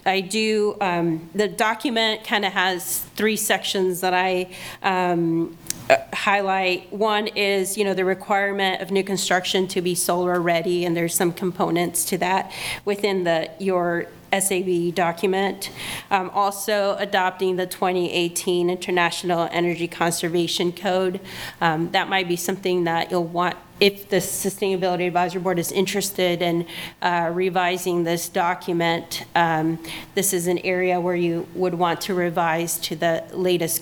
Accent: American